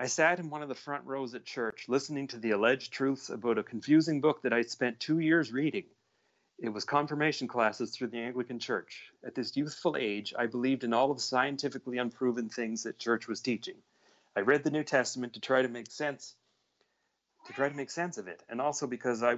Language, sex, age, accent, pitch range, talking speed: English, male, 40-59, American, 115-140 Hz, 220 wpm